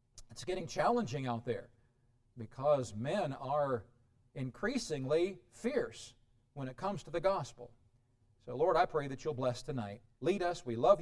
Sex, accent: male, American